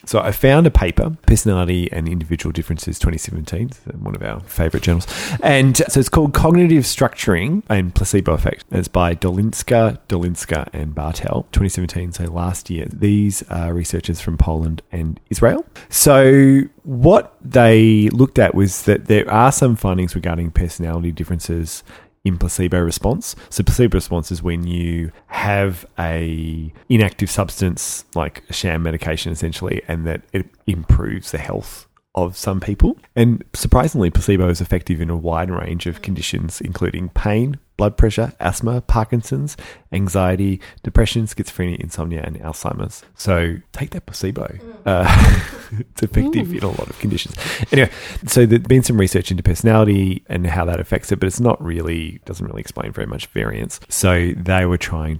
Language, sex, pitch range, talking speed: English, male, 85-105 Hz, 155 wpm